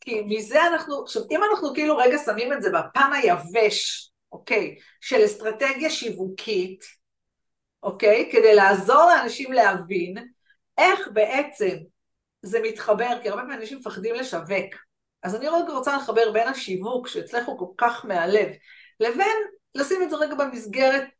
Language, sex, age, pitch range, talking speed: Hebrew, female, 50-69, 210-300 Hz, 140 wpm